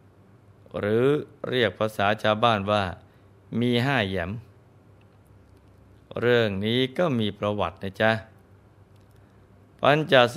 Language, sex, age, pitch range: Thai, male, 20-39, 100-115 Hz